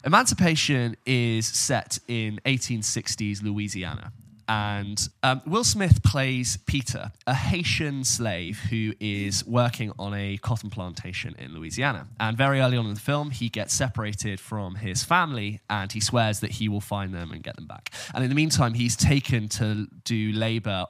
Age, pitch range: 10-29, 100-120 Hz